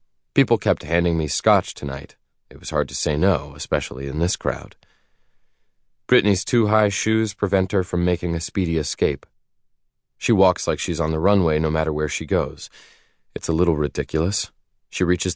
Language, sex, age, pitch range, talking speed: English, male, 30-49, 75-95 Hz, 175 wpm